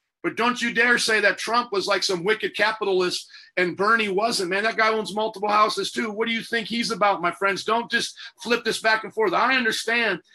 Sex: male